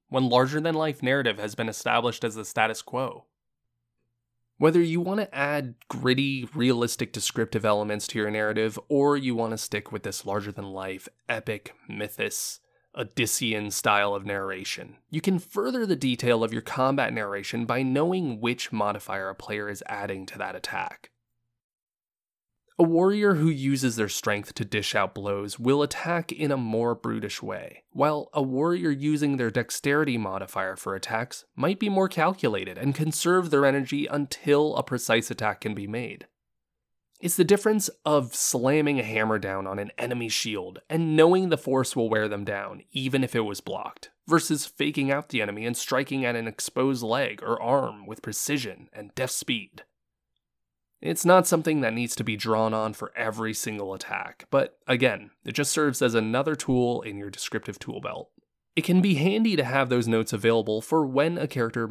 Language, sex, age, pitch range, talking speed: English, male, 20-39, 110-145 Hz, 175 wpm